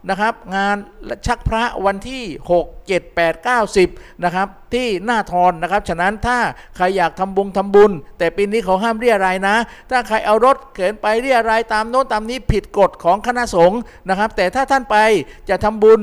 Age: 50-69